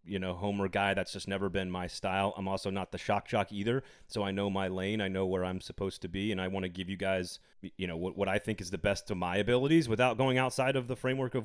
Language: English